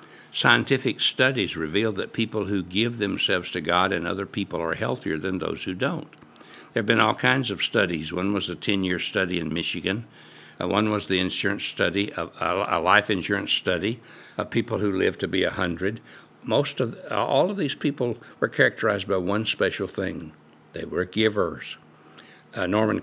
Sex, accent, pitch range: male, American, 90-110 Hz